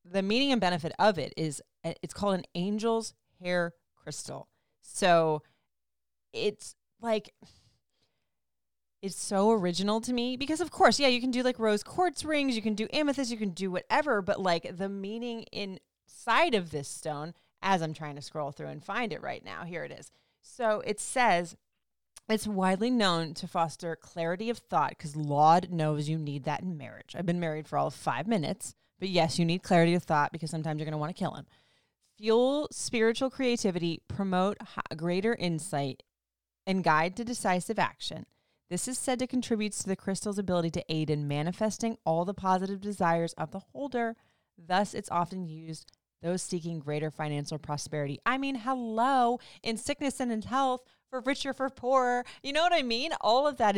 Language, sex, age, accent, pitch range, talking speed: English, female, 30-49, American, 160-230 Hz, 185 wpm